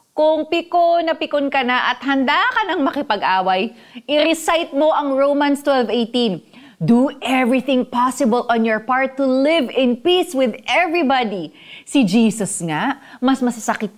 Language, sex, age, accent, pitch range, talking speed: Filipino, female, 20-39, native, 165-265 Hz, 140 wpm